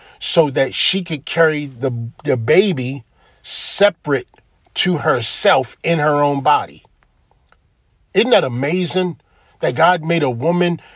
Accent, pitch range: American, 120-175 Hz